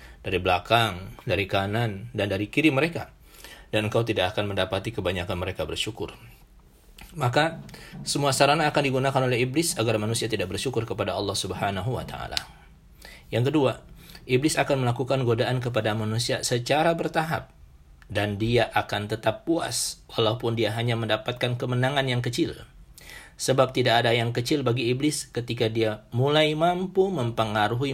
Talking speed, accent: 140 wpm, native